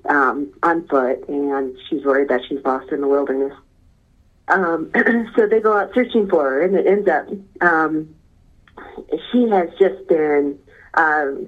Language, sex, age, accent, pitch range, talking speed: English, female, 40-59, American, 140-185 Hz, 155 wpm